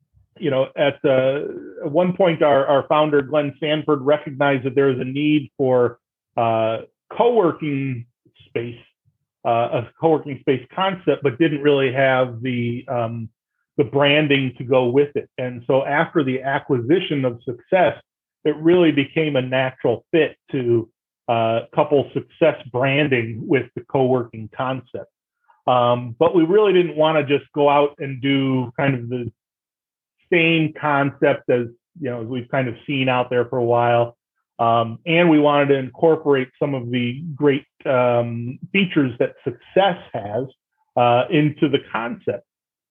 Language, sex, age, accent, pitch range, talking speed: English, male, 40-59, American, 120-150 Hz, 155 wpm